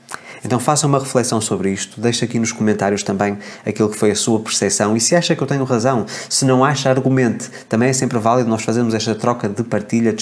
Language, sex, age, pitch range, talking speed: Portuguese, male, 20-39, 105-120 Hz, 230 wpm